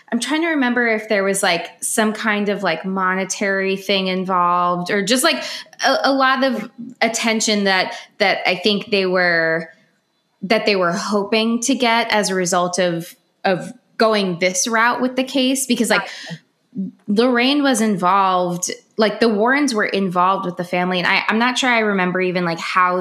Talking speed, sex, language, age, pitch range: 175 wpm, female, English, 20-39, 185-230 Hz